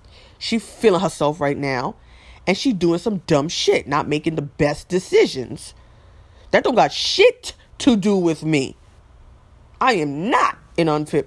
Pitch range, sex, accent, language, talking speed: 135-190 Hz, female, American, English, 155 wpm